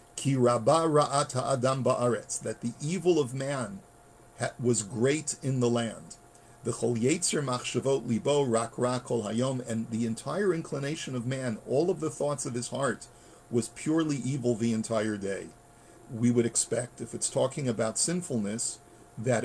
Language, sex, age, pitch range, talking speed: English, male, 50-69, 115-145 Hz, 135 wpm